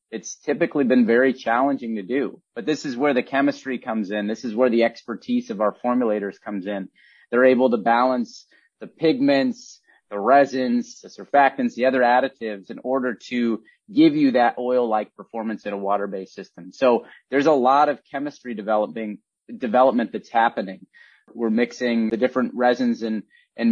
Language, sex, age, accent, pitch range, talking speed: English, male, 30-49, American, 110-140 Hz, 170 wpm